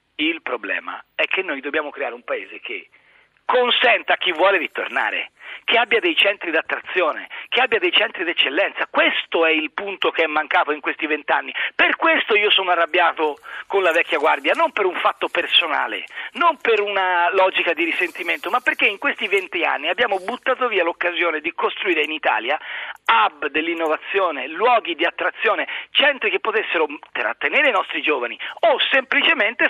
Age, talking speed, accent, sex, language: 40-59, 170 wpm, native, male, Italian